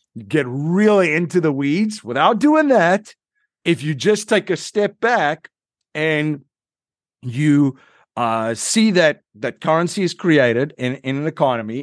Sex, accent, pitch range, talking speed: male, American, 120-155 Hz, 140 wpm